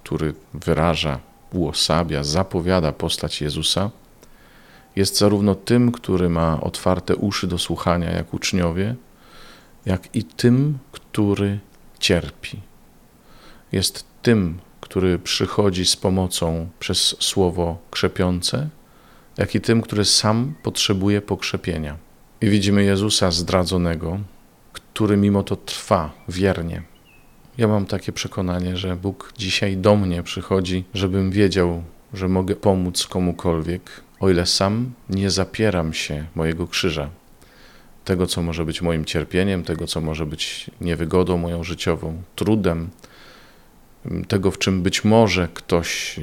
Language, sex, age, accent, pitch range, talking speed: Polish, male, 40-59, native, 85-100 Hz, 120 wpm